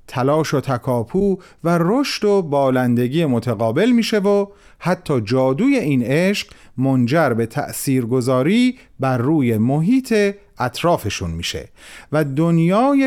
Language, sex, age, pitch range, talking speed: Persian, male, 40-59, 110-180 Hz, 110 wpm